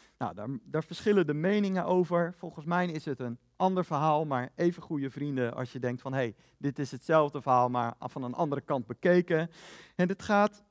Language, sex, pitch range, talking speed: Dutch, male, 140-205 Hz, 205 wpm